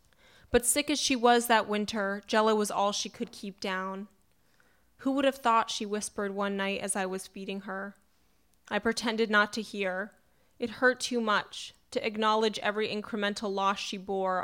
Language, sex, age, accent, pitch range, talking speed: English, female, 20-39, American, 190-220 Hz, 180 wpm